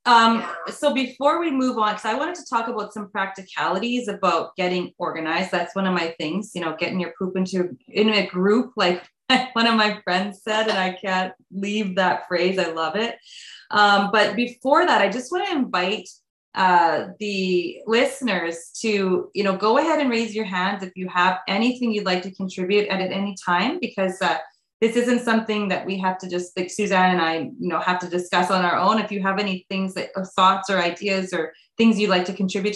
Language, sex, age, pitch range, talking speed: English, female, 20-39, 185-225 Hz, 215 wpm